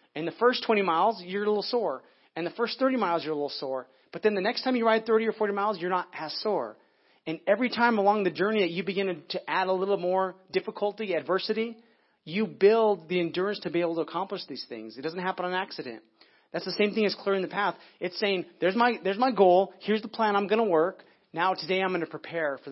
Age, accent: 30-49, American